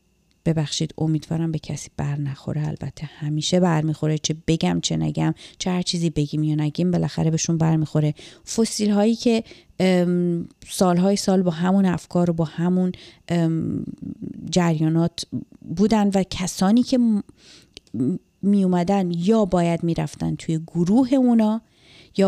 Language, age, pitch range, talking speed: Persian, 30-49, 160-190 Hz, 125 wpm